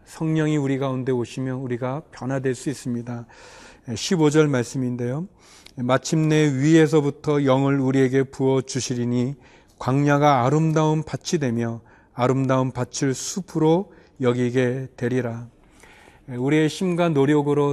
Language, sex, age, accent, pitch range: Korean, male, 40-59, native, 130-160 Hz